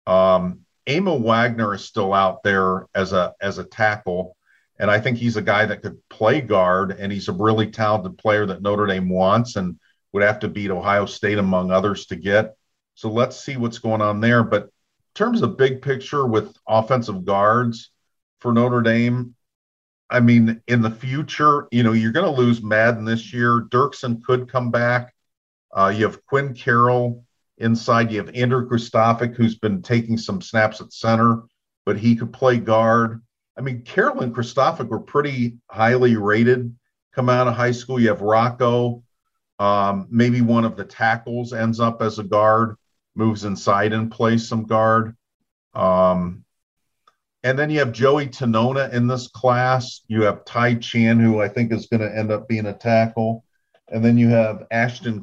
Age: 50-69